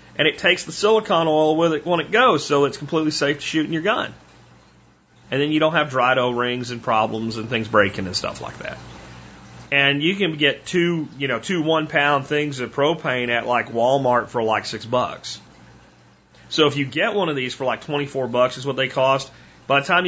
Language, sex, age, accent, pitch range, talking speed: English, male, 40-59, American, 120-150 Hz, 220 wpm